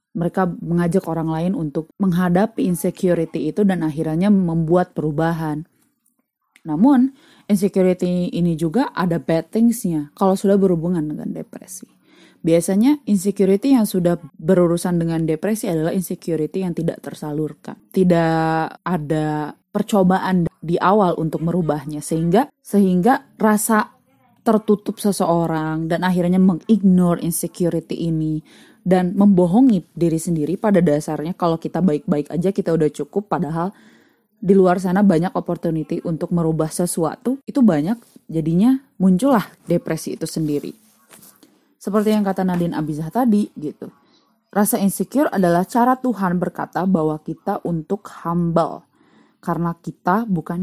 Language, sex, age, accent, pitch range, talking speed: Indonesian, female, 20-39, native, 165-205 Hz, 120 wpm